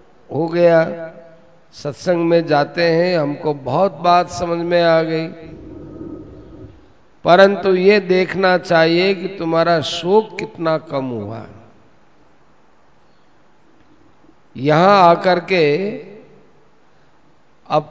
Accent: native